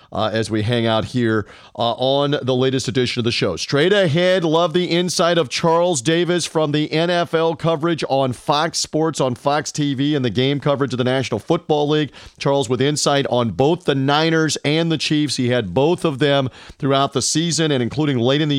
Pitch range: 125-155 Hz